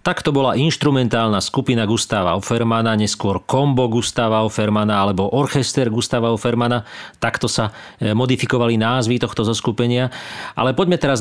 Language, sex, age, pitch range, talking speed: Slovak, male, 40-59, 110-130 Hz, 130 wpm